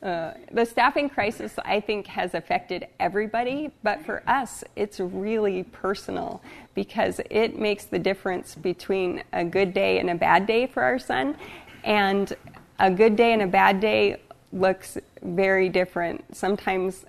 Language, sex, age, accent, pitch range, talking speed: English, female, 30-49, American, 185-215 Hz, 150 wpm